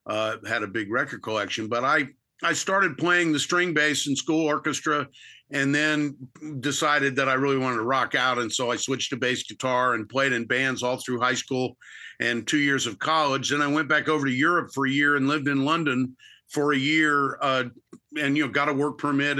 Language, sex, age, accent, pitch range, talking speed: English, male, 50-69, American, 130-150 Hz, 225 wpm